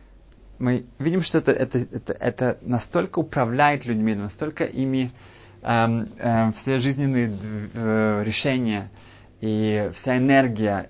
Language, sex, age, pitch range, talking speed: Russian, male, 20-39, 110-130 Hz, 115 wpm